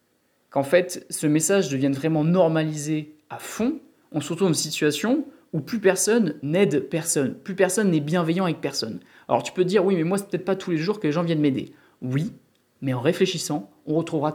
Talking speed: 215 wpm